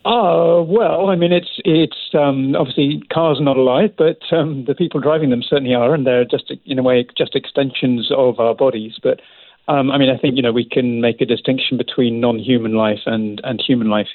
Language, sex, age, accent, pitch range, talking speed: English, male, 40-59, British, 110-140 Hz, 220 wpm